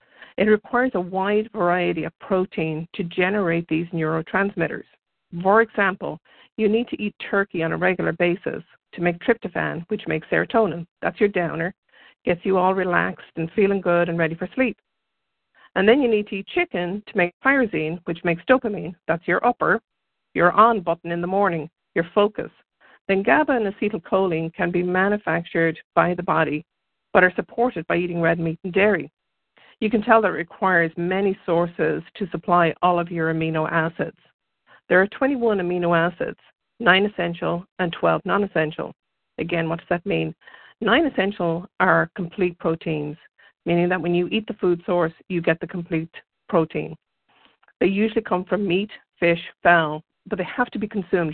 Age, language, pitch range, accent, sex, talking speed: 50-69, English, 170-205 Hz, American, female, 170 wpm